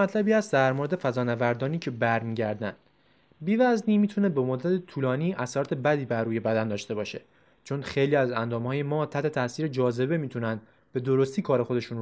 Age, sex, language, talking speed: 20-39, male, Persian, 160 wpm